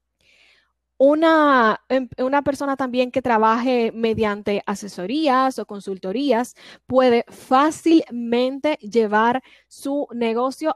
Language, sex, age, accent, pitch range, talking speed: Spanish, female, 10-29, American, 220-270 Hz, 85 wpm